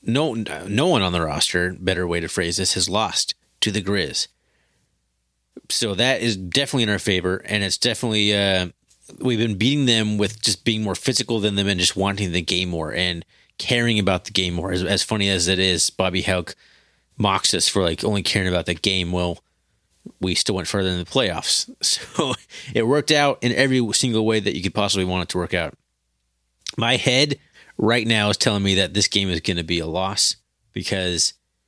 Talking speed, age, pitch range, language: 205 wpm, 30-49, 90-110 Hz, English